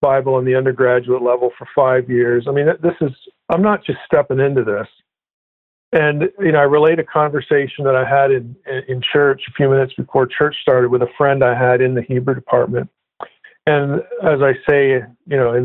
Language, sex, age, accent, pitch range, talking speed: English, male, 50-69, American, 130-155 Hz, 205 wpm